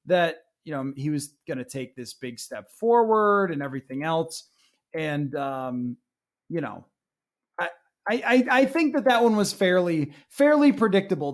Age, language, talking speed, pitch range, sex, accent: 20-39, English, 160 wpm, 160-220 Hz, male, American